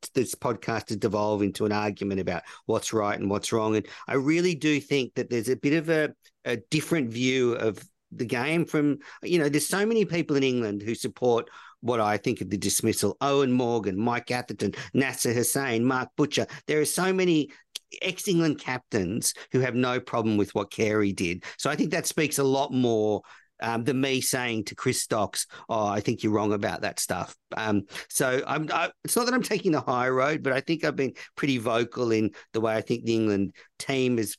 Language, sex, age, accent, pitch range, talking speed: English, male, 50-69, Australian, 110-150 Hz, 210 wpm